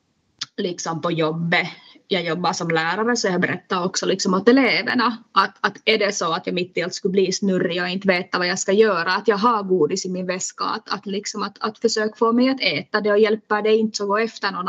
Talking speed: 240 wpm